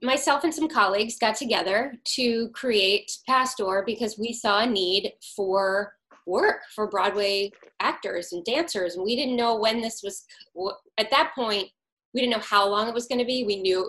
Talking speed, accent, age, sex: 185 wpm, American, 20-39, female